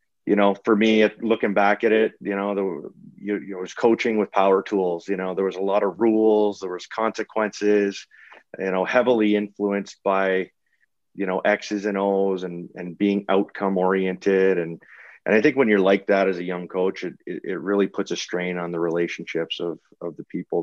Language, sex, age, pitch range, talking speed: English, male, 30-49, 85-100 Hz, 205 wpm